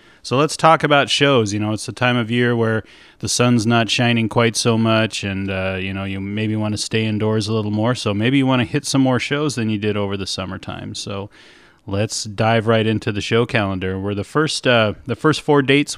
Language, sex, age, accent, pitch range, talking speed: English, male, 30-49, American, 105-125 Hz, 240 wpm